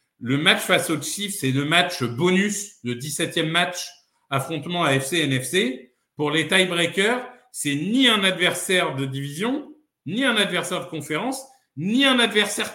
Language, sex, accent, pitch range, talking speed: French, male, French, 140-190 Hz, 150 wpm